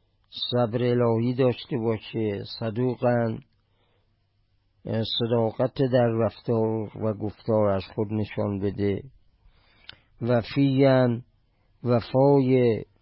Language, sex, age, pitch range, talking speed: Persian, male, 50-69, 105-125 Hz, 75 wpm